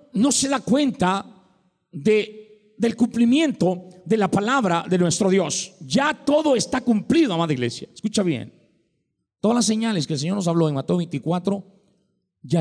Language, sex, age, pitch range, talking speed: Spanish, male, 50-69, 180-255 Hz, 150 wpm